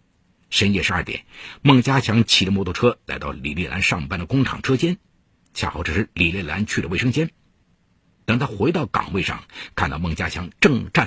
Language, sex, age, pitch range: Chinese, male, 50-69, 90-140 Hz